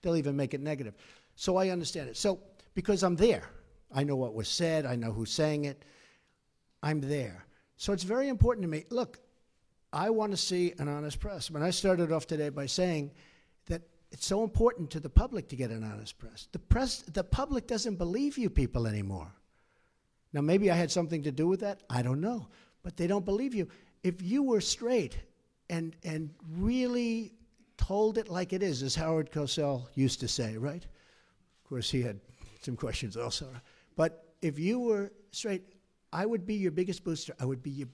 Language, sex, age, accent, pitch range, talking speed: English, male, 60-79, American, 140-200 Hz, 200 wpm